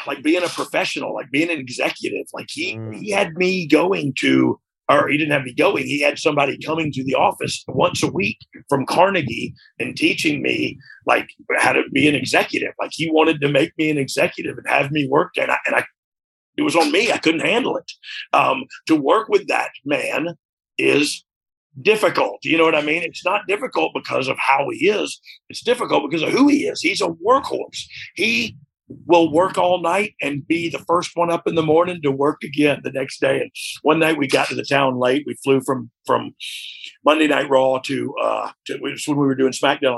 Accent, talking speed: American, 210 wpm